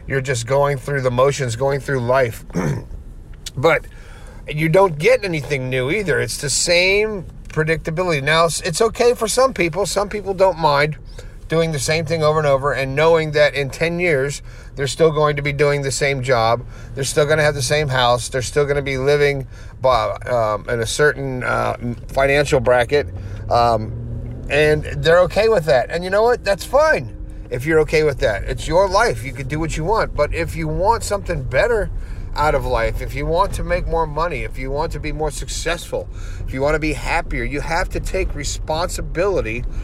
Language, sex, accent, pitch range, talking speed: English, male, American, 120-165 Hz, 200 wpm